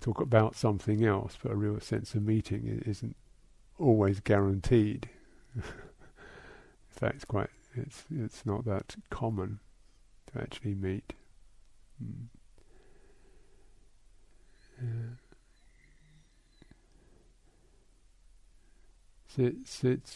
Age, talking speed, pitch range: 50-69, 85 wpm, 100-120 Hz